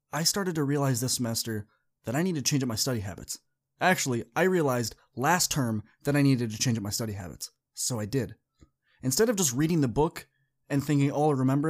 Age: 30-49